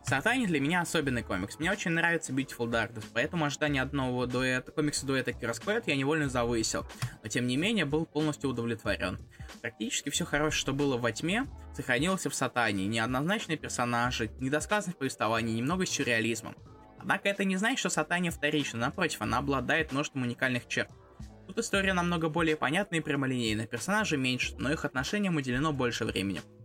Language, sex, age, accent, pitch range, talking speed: Russian, male, 20-39, native, 120-160 Hz, 155 wpm